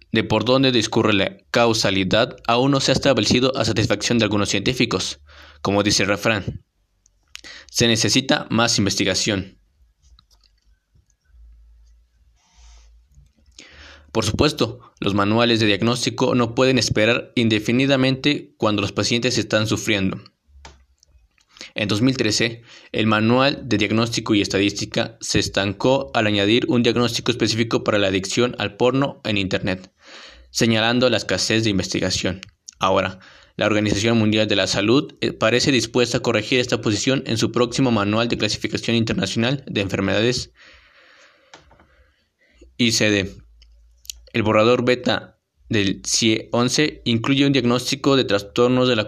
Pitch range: 95-120 Hz